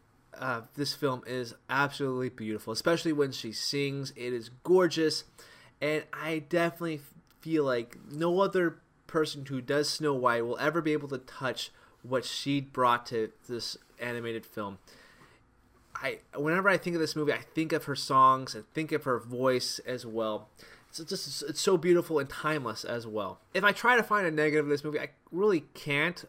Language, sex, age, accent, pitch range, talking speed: English, male, 20-39, American, 130-165 Hz, 180 wpm